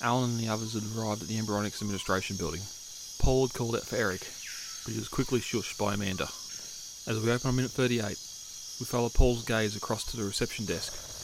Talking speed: 210 wpm